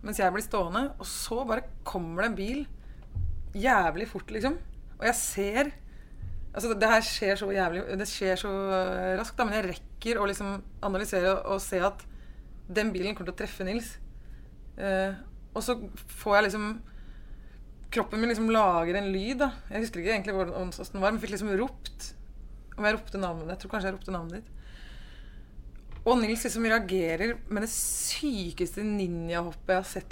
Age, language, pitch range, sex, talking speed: 20-39, English, 190-235 Hz, female, 170 wpm